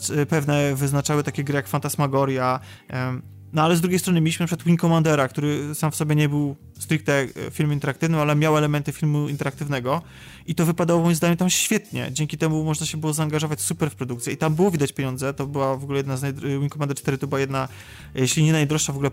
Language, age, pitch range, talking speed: Polish, 20-39, 135-155 Hz, 215 wpm